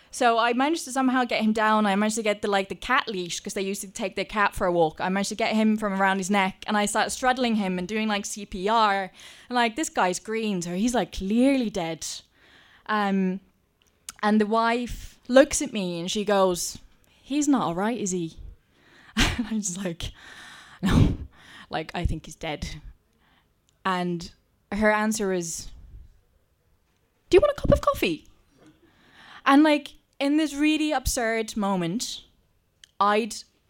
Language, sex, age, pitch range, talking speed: English, female, 20-39, 170-230 Hz, 175 wpm